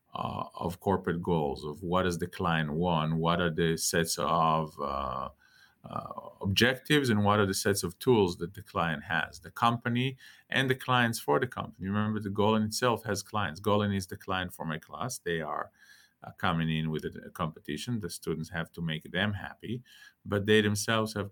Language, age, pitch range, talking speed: English, 50-69, 80-105 Hz, 195 wpm